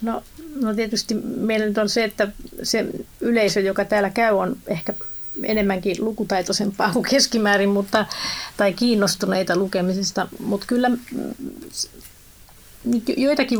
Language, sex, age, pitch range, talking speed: Finnish, female, 30-49, 190-220 Hz, 110 wpm